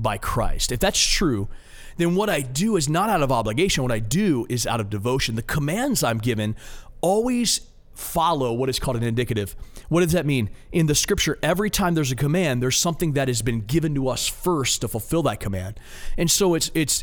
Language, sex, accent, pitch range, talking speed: English, male, American, 120-160 Hz, 215 wpm